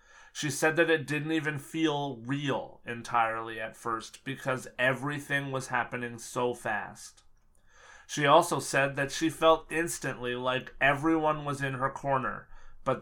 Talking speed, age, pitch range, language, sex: 145 wpm, 30-49, 125-150 Hz, English, male